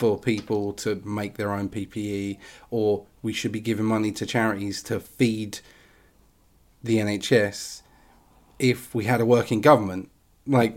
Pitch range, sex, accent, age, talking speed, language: 105-130 Hz, male, British, 30-49, 145 wpm, English